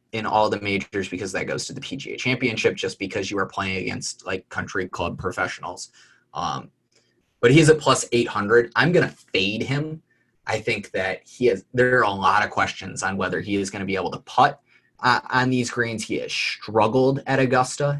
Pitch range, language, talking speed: 100-130 Hz, English, 205 wpm